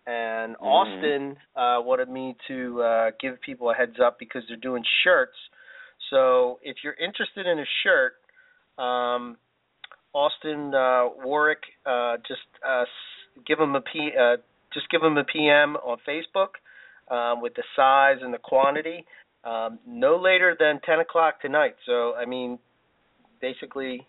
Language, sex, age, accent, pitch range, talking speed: English, male, 40-59, American, 120-160 Hz, 150 wpm